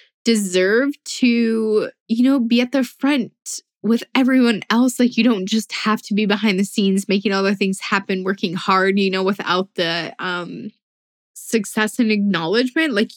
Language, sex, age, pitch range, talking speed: English, female, 10-29, 185-225 Hz, 170 wpm